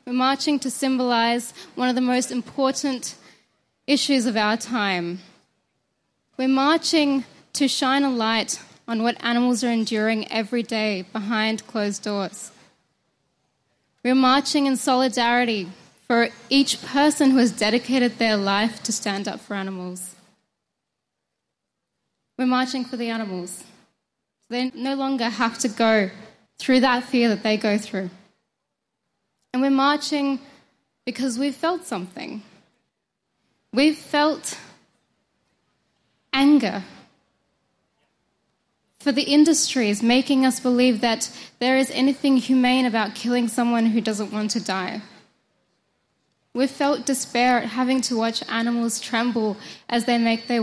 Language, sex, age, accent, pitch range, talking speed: English, female, 10-29, Australian, 220-265 Hz, 125 wpm